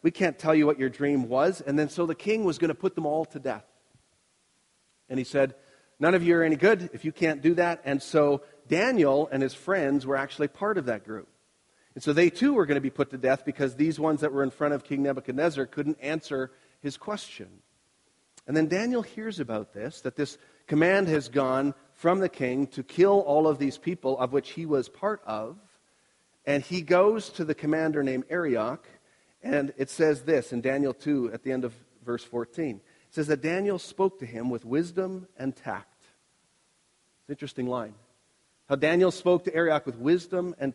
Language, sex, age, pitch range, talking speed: English, male, 40-59, 135-165 Hz, 205 wpm